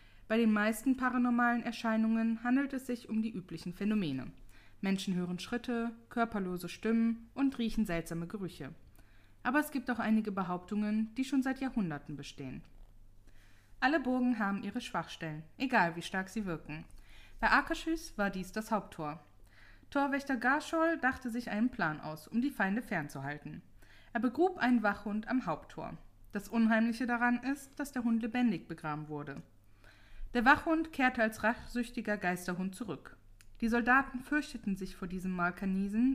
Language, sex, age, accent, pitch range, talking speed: German, female, 20-39, German, 165-245 Hz, 150 wpm